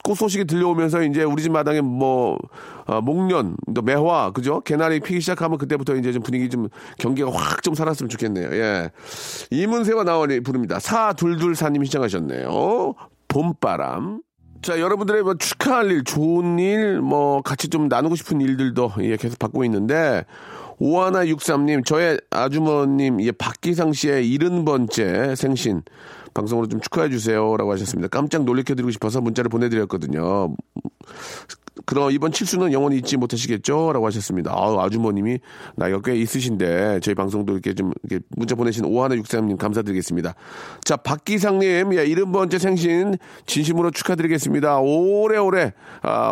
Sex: male